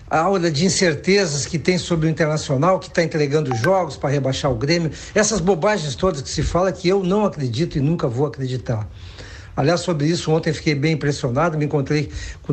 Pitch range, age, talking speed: 135-185 Hz, 60-79, 195 wpm